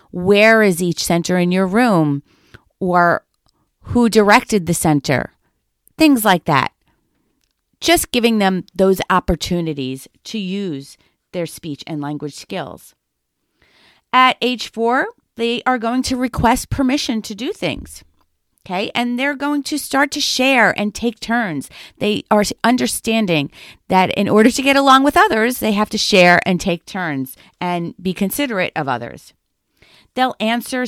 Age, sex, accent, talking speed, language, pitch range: 40-59, female, American, 145 wpm, English, 175-235 Hz